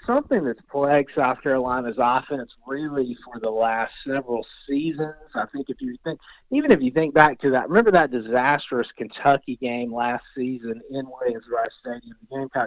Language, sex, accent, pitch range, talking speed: English, male, American, 130-160 Hz, 175 wpm